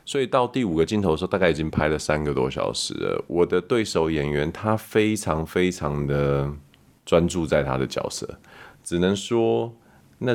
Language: Chinese